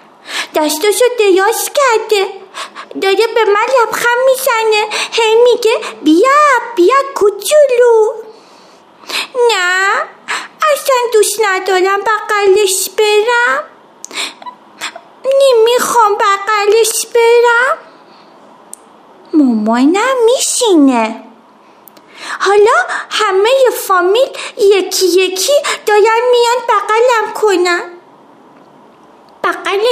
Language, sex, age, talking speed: Persian, female, 30-49, 70 wpm